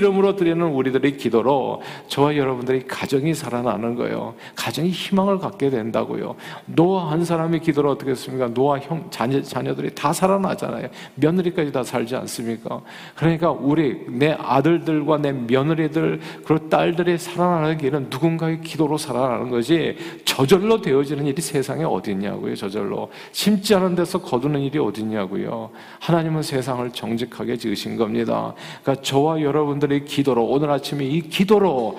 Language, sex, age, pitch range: Korean, male, 50-69, 130-170 Hz